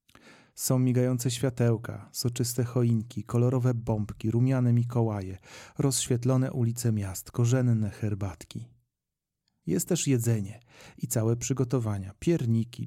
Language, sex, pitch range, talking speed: Polish, male, 110-130 Hz, 100 wpm